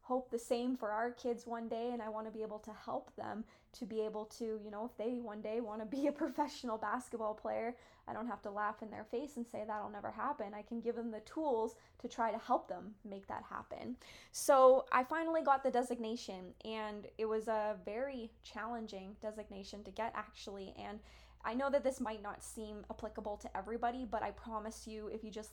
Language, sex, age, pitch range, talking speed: English, female, 10-29, 210-245 Hz, 225 wpm